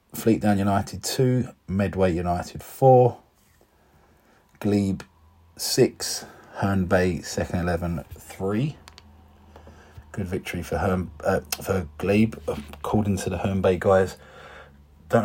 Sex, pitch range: male, 80-95 Hz